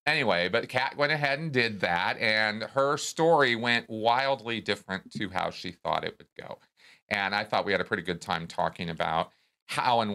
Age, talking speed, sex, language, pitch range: 40-59, 200 wpm, male, English, 85-115 Hz